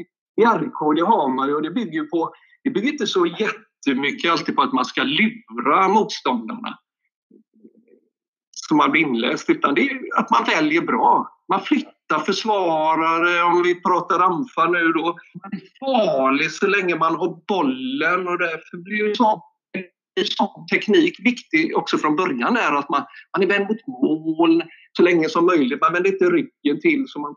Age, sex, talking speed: 50-69, male, 170 wpm